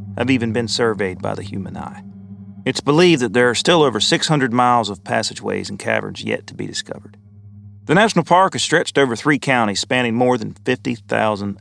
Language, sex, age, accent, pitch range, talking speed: English, male, 40-59, American, 110-145 Hz, 190 wpm